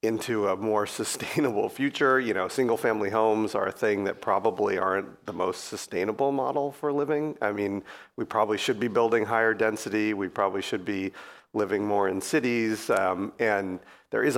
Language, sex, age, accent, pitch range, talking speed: English, male, 40-59, American, 100-135 Hz, 175 wpm